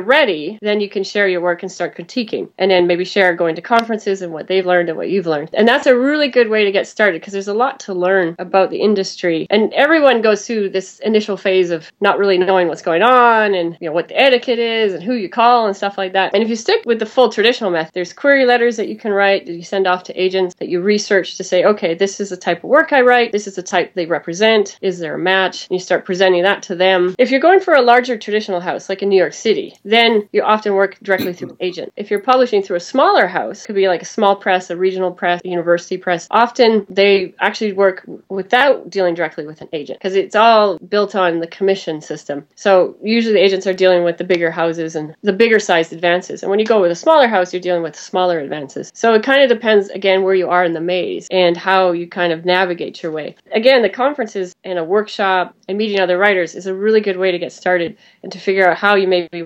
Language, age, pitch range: English, 30-49, 180-215 Hz